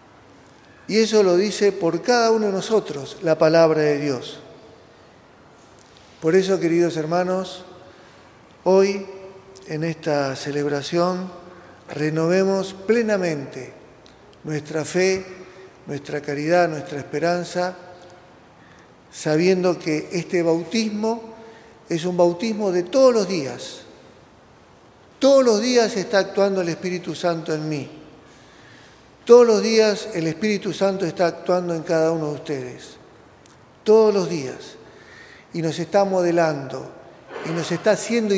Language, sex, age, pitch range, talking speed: Spanish, male, 40-59, 165-200 Hz, 115 wpm